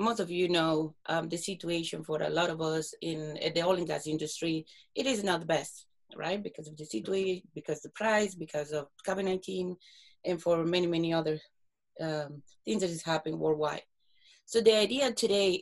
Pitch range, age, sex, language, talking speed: 165-215 Hz, 30-49, female, English, 190 wpm